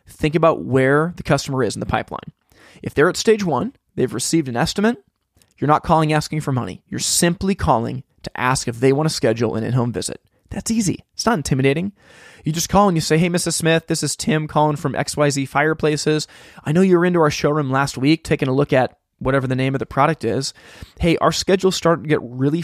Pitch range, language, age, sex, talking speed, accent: 130-165 Hz, English, 20-39, male, 225 wpm, American